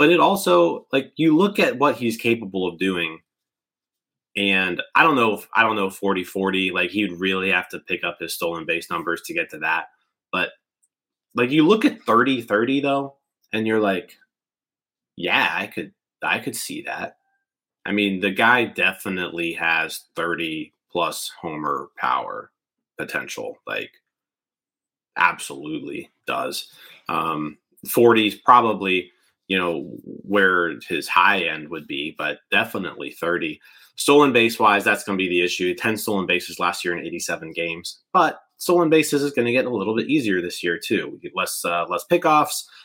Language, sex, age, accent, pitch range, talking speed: English, male, 30-49, American, 95-135 Hz, 170 wpm